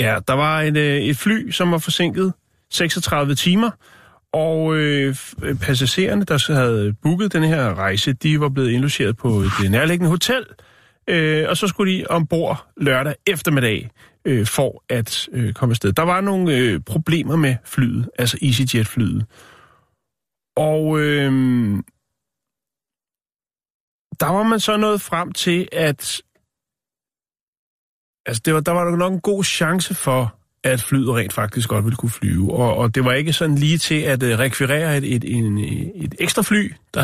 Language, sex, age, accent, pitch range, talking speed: Danish, male, 30-49, native, 120-175 Hz, 160 wpm